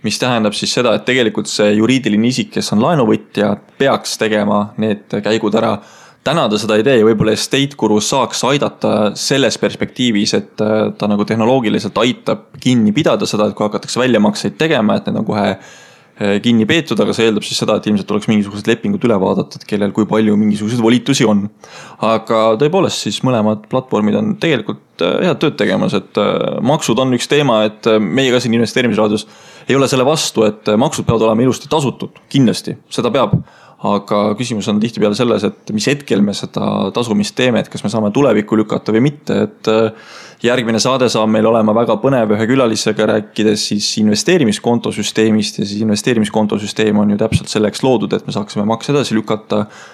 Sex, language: male, English